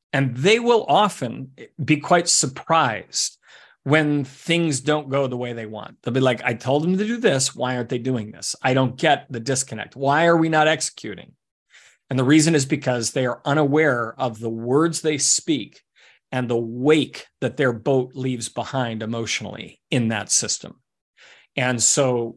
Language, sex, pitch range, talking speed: English, male, 125-150 Hz, 175 wpm